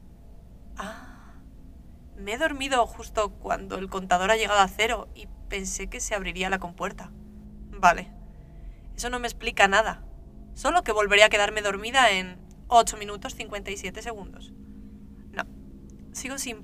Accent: Spanish